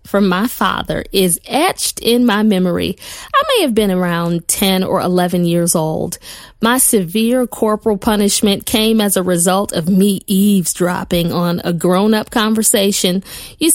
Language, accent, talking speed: English, American, 150 wpm